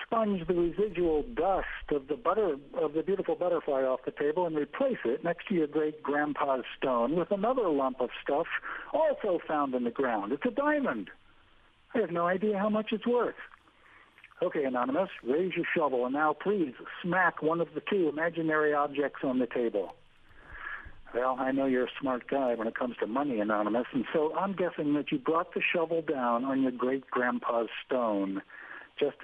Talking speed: 185 wpm